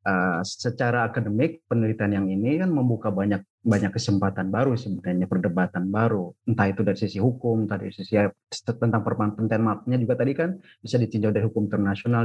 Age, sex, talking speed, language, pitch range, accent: 30-49, male, 170 wpm, Indonesian, 100-125 Hz, native